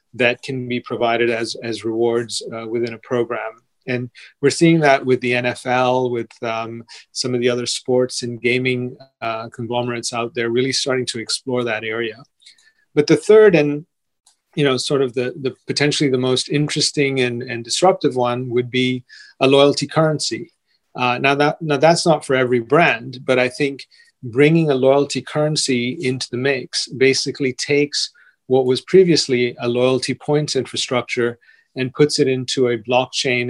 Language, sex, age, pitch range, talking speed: English, male, 30-49, 120-140 Hz, 170 wpm